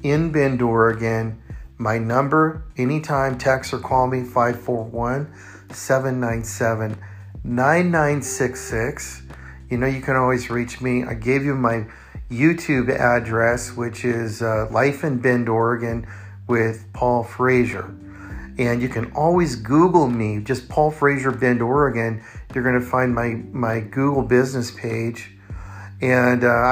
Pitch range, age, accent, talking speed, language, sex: 115-135 Hz, 40-59, American, 125 wpm, English, male